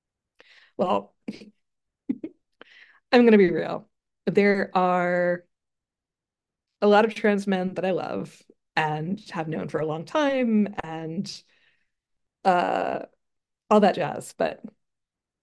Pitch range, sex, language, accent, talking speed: 170-215 Hz, female, English, American, 115 wpm